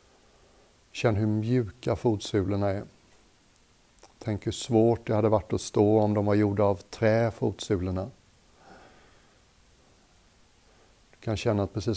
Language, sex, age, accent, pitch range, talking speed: Swedish, male, 60-79, native, 100-110 Hz, 125 wpm